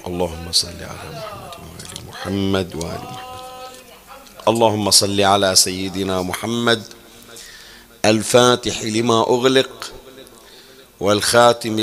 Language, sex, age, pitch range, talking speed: Arabic, male, 50-69, 100-115 Hz, 85 wpm